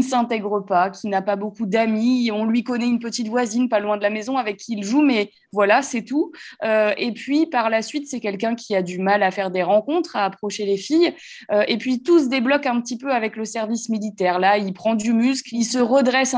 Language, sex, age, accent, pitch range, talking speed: French, female, 20-39, French, 205-265 Hz, 245 wpm